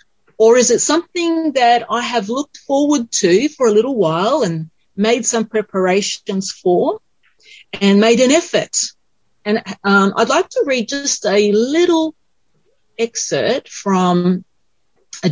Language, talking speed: English, 135 wpm